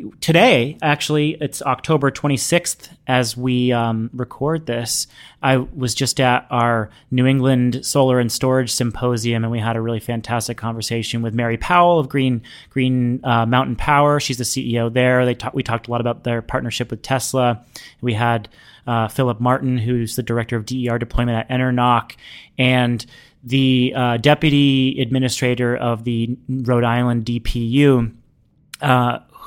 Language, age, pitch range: English, 30-49, 120-140 Hz